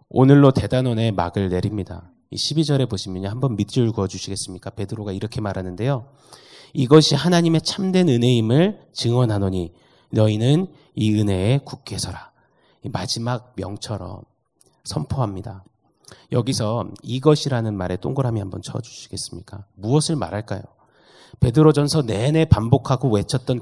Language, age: Korean, 30-49